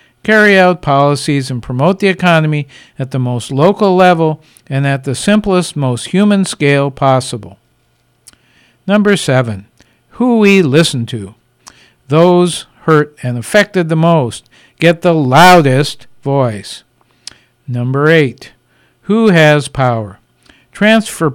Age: 60-79